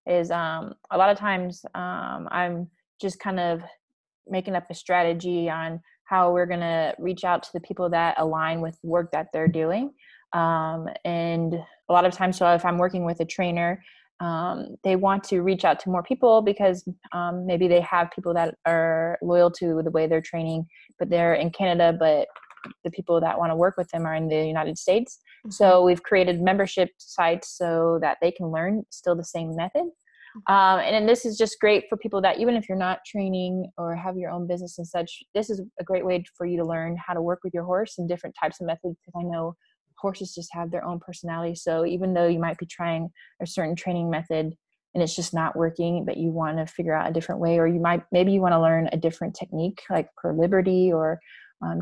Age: 20-39